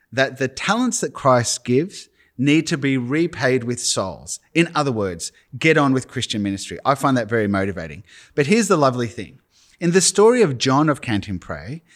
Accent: Australian